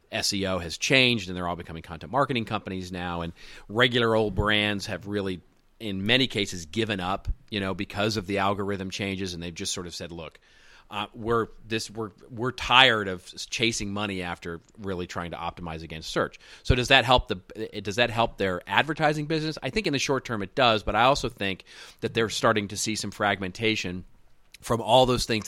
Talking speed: 205 wpm